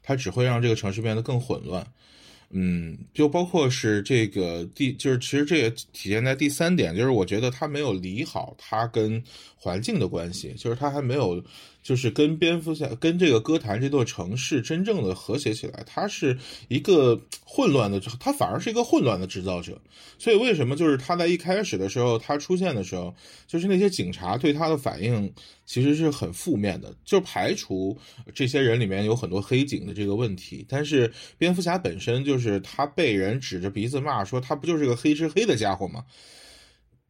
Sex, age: male, 20-39